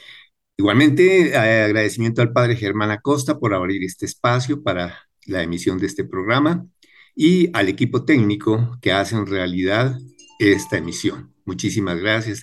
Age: 50-69